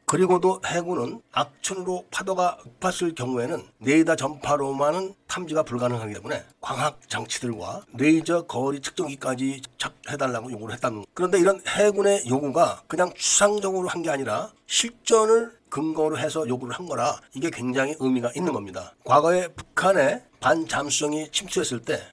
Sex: male